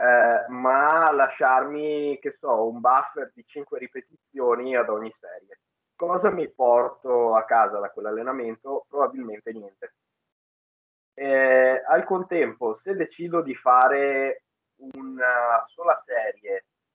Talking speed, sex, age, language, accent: 115 wpm, male, 20-39, Italian, native